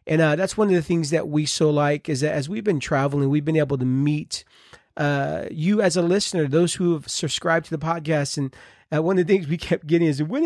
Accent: American